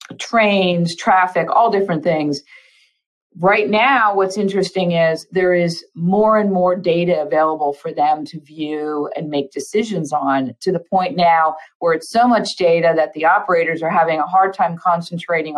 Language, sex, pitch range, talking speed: English, female, 155-185 Hz, 165 wpm